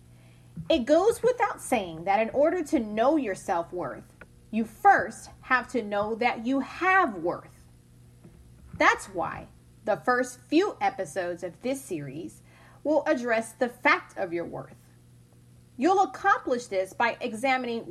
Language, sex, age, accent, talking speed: English, female, 30-49, American, 140 wpm